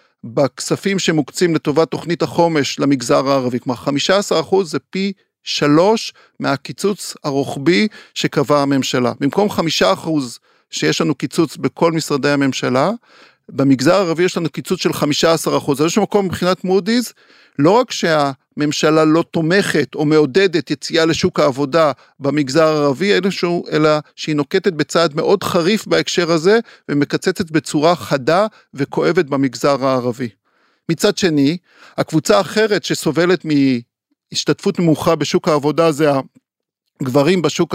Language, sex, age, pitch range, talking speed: Hebrew, male, 50-69, 145-180 Hz, 130 wpm